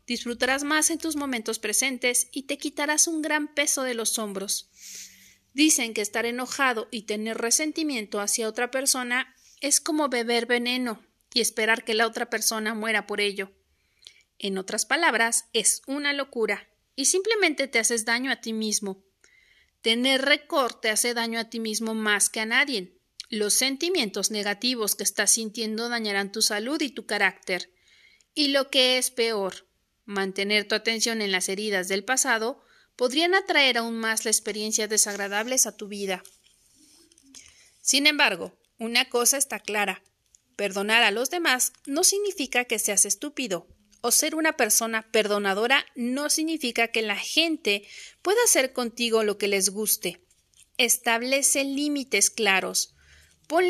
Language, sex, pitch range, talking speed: Spanish, female, 215-275 Hz, 150 wpm